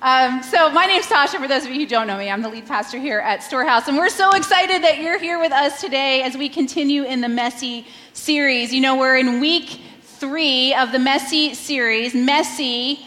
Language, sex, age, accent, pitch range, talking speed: English, female, 30-49, American, 245-305 Hz, 220 wpm